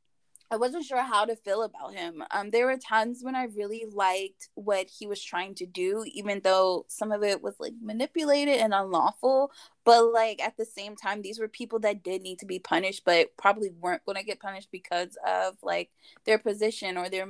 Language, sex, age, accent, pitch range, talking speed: English, female, 20-39, American, 185-230 Hz, 210 wpm